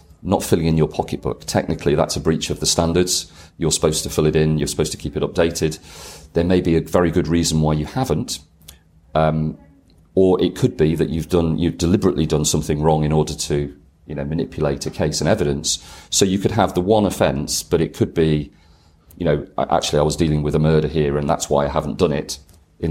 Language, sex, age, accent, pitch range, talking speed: English, male, 40-59, British, 75-80 Hz, 225 wpm